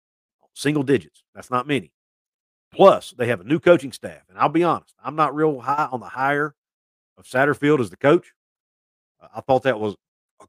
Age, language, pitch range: 50-69, English, 110-145 Hz